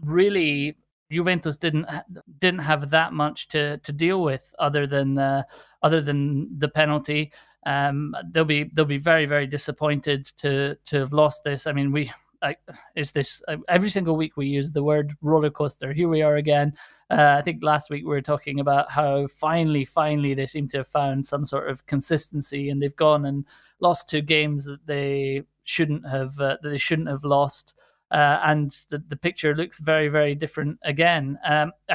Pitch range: 145-160 Hz